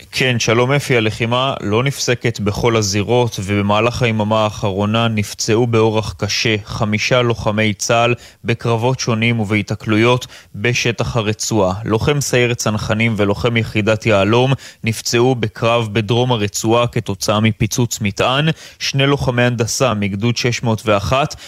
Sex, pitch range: male, 110-130 Hz